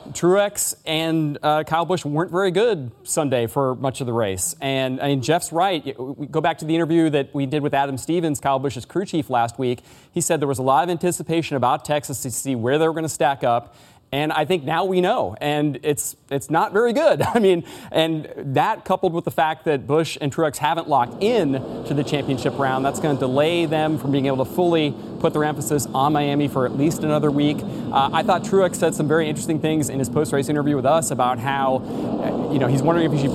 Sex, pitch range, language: male, 135-165 Hz, English